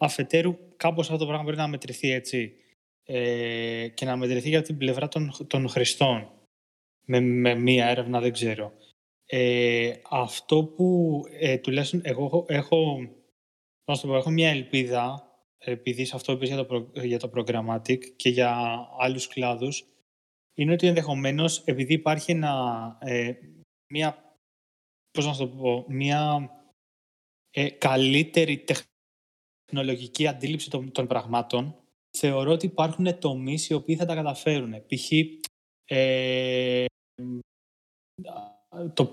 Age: 20-39